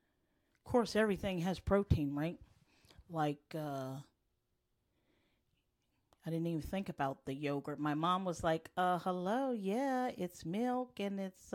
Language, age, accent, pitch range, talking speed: English, 40-59, American, 155-185 Hz, 130 wpm